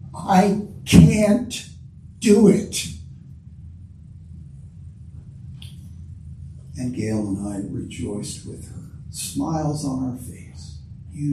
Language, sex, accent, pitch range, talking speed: English, male, American, 95-145 Hz, 85 wpm